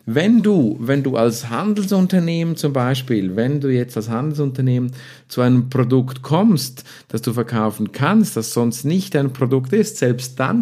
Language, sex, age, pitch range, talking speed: German, male, 50-69, 115-145 Hz, 165 wpm